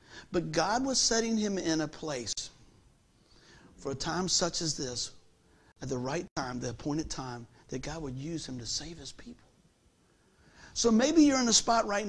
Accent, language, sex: American, English, male